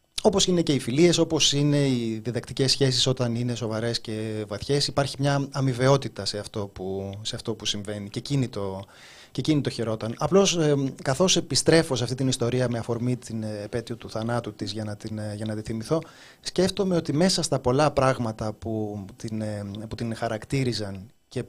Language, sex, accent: Greek, male, native